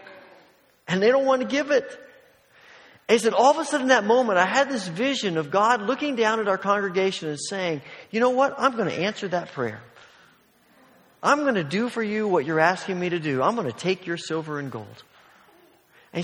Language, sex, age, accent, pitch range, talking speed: English, male, 50-69, American, 140-225 Hz, 220 wpm